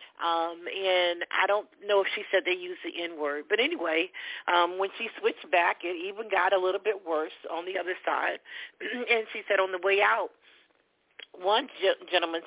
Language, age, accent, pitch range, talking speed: English, 40-59, American, 170-215 Hz, 190 wpm